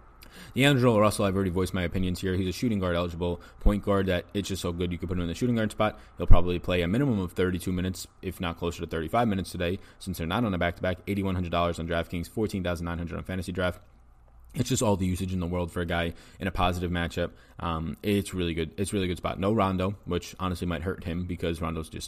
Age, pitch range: 20-39, 85-100 Hz